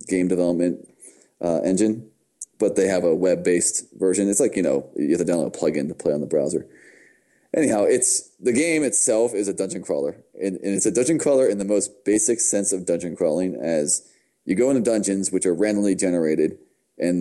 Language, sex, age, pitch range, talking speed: English, male, 30-49, 85-105 Hz, 200 wpm